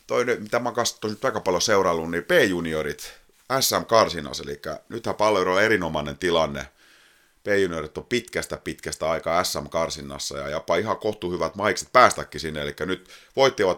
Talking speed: 155 wpm